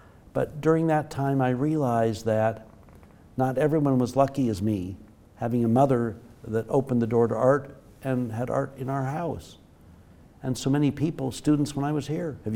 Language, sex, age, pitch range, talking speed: English, male, 60-79, 110-145 Hz, 180 wpm